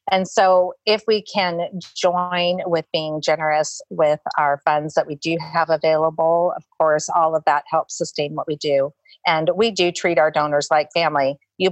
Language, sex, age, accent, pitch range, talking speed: English, female, 40-59, American, 155-185 Hz, 185 wpm